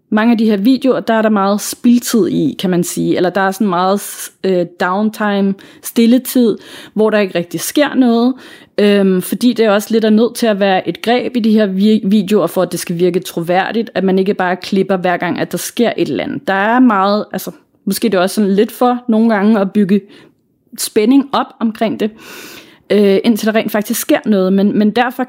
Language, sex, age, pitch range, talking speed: Danish, female, 30-49, 190-240 Hz, 220 wpm